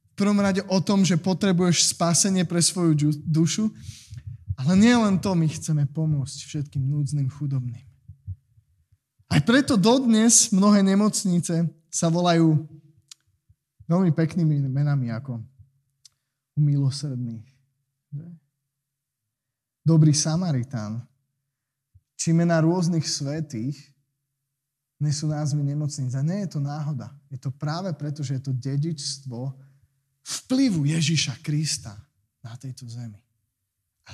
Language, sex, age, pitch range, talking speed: Slovak, male, 20-39, 125-160 Hz, 100 wpm